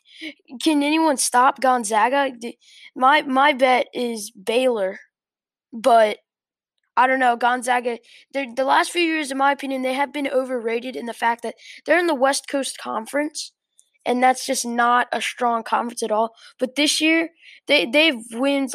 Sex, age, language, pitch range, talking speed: female, 10-29, English, 230-275 Hz, 160 wpm